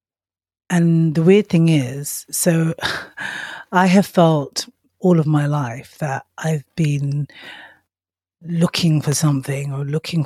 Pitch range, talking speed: 135-165 Hz, 125 wpm